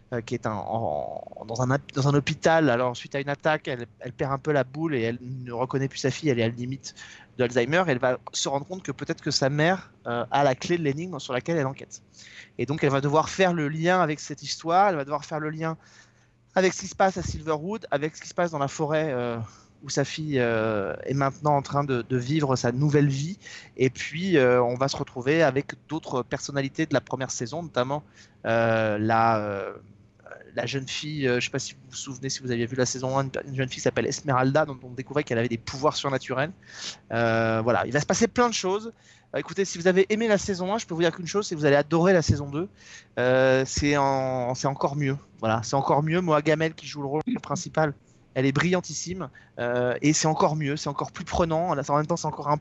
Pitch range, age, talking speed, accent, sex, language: 125-160 Hz, 20-39, 245 wpm, French, male, French